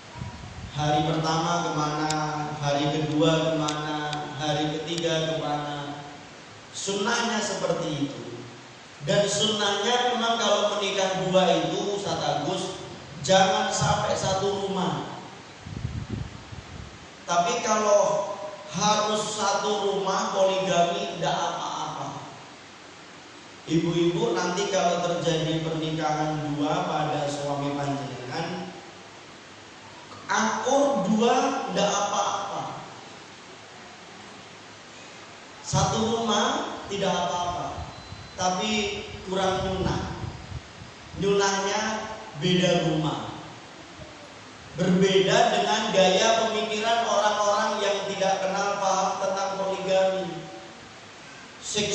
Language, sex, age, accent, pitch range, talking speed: Indonesian, male, 30-49, native, 155-200 Hz, 80 wpm